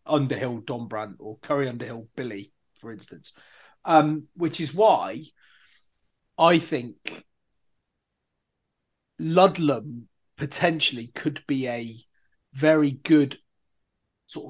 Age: 30-49